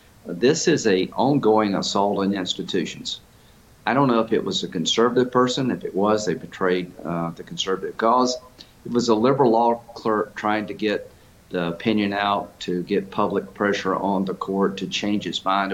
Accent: American